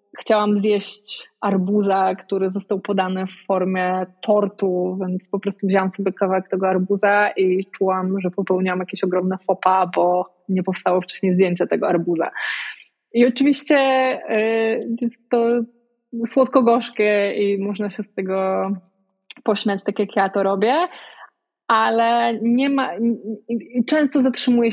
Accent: native